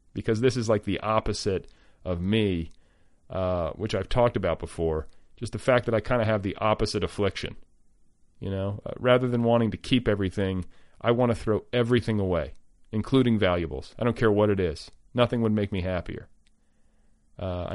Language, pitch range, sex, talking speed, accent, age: English, 90-110 Hz, male, 185 wpm, American, 40-59